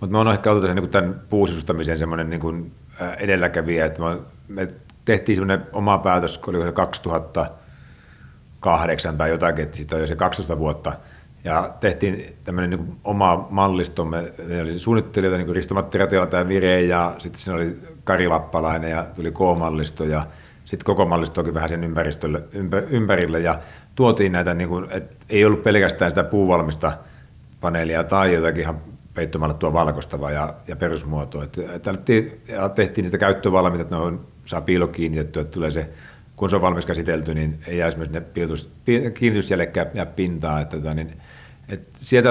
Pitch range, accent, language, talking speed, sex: 80-95 Hz, native, Finnish, 140 wpm, male